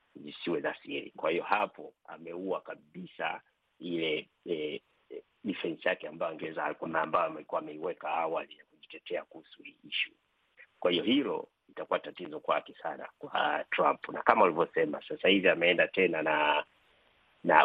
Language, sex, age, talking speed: Swahili, male, 50-69, 145 wpm